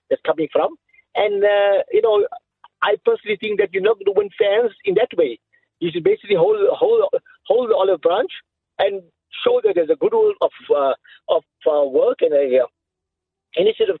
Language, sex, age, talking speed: English, male, 50-69, 195 wpm